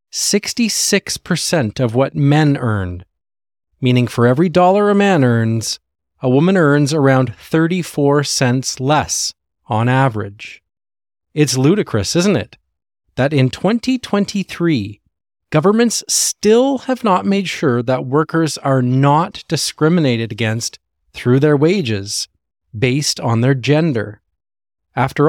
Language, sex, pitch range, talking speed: English, male, 110-155 Hz, 110 wpm